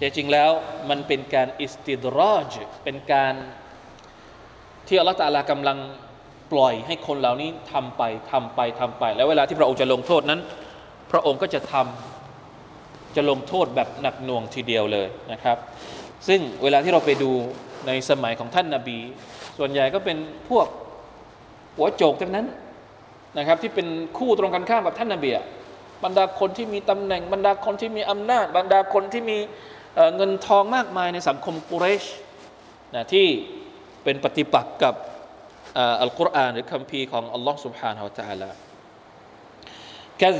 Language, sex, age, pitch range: Thai, male, 20-39, 135-200 Hz